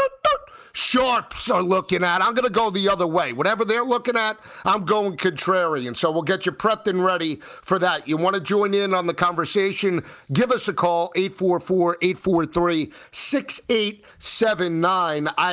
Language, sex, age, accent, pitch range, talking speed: English, male, 50-69, American, 170-210 Hz, 155 wpm